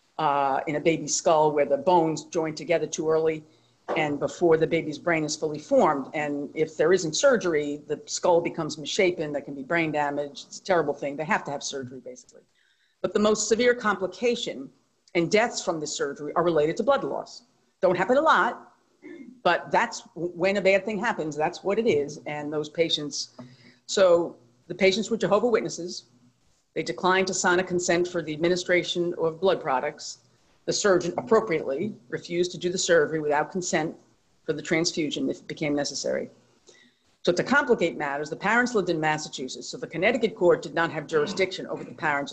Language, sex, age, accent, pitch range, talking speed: English, female, 50-69, American, 150-200 Hz, 185 wpm